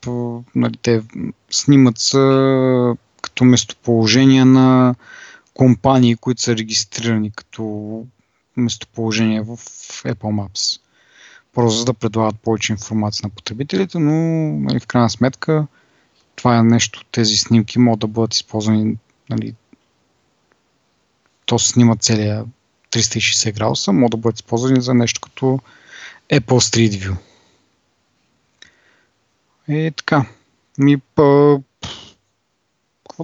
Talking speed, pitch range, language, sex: 110 wpm, 110-130 Hz, Bulgarian, male